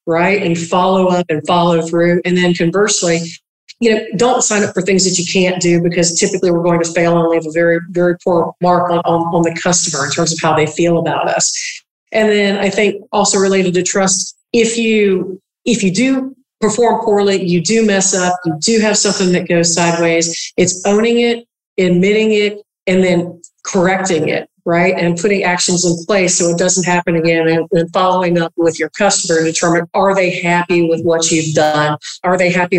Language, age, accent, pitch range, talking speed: English, 50-69, American, 170-205 Hz, 205 wpm